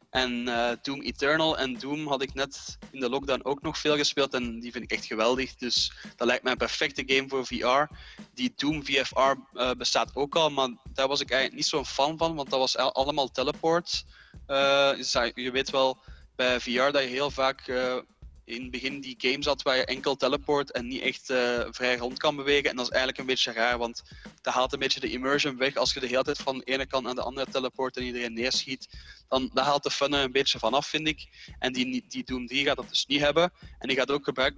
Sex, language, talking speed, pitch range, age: male, Dutch, 235 wpm, 125-145 Hz, 20-39